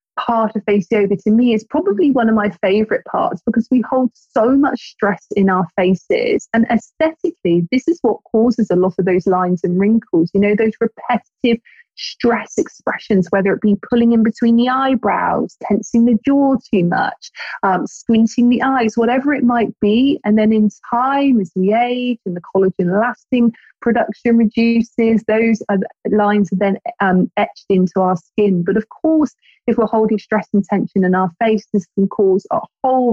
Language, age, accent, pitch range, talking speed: English, 20-39, British, 195-240 Hz, 185 wpm